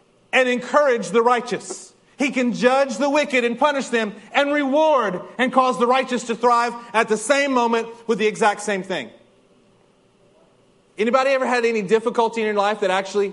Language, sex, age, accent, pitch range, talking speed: English, male, 30-49, American, 205-255 Hz, 175 wpm